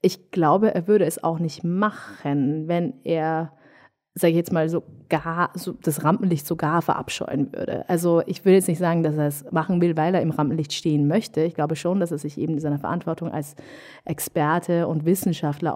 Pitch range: 160-185 Hz